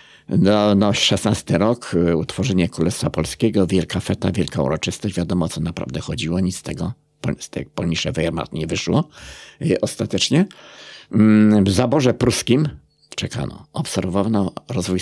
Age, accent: 50-69, native